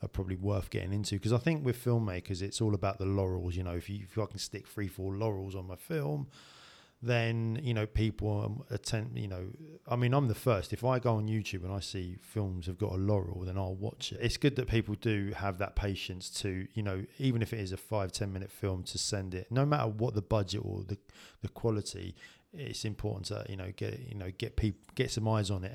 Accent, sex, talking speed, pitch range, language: British, male, 245 wpm, 95-115 Hz, English